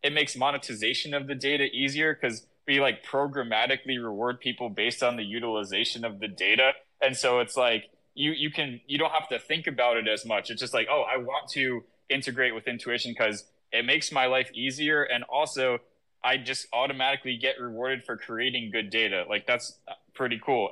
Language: English